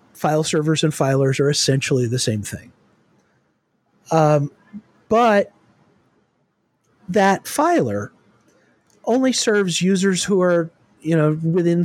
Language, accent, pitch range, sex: English, American, 145-180 Hz, male